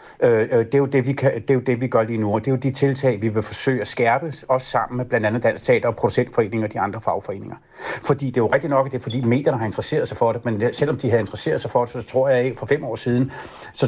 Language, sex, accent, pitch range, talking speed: Danish, male, native, 115-135 Hz, 300 wpm